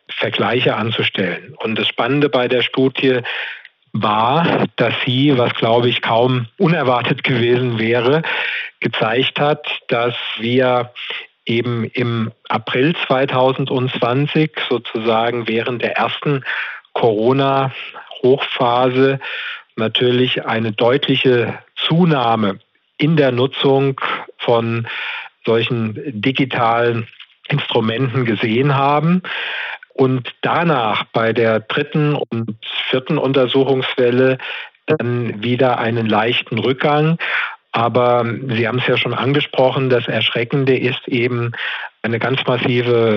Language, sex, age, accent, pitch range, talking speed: German, male, 50-69, German, 115-135 Hz, 100 wpm